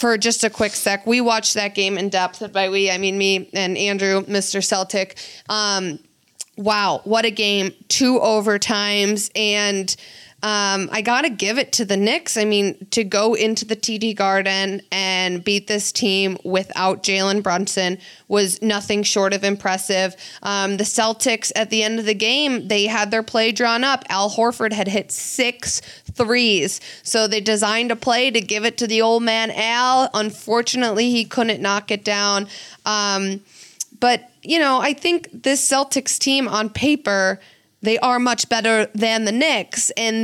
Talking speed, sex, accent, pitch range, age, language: 175 wpm, female, American, 200-235 Hz, 20-39, English